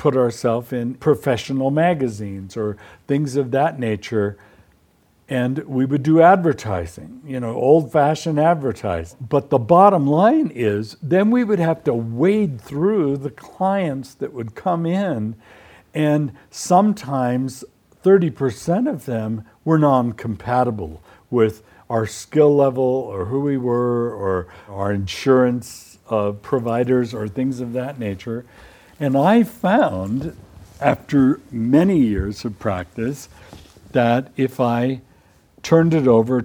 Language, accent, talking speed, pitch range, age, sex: English, American, 125 wpm, 110-145 Hz, 60-79, male